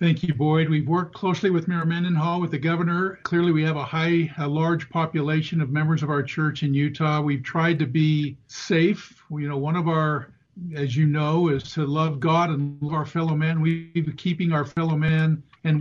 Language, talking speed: English, 215 wpm